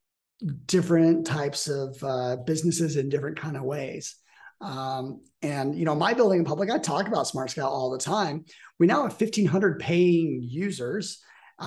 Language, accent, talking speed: English, American, 160 wpm